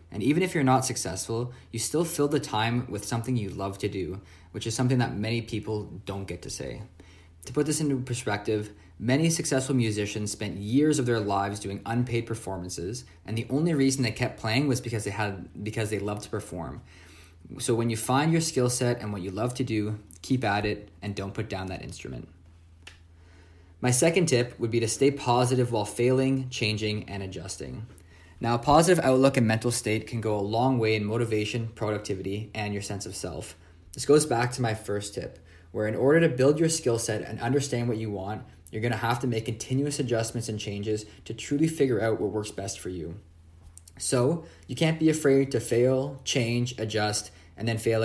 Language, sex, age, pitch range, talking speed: English, male, 20-39, 100-130 Hz, 205 wpm